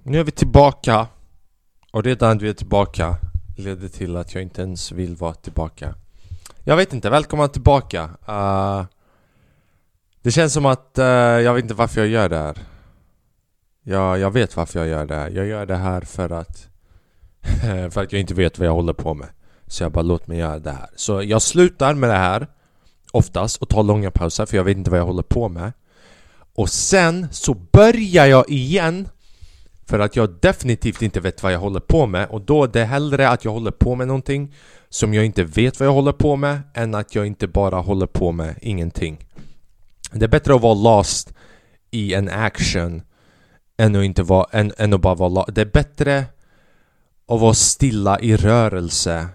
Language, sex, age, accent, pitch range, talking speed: Swedish, male, 20-39, Norwegian, 85-115 Hz, 195 wpm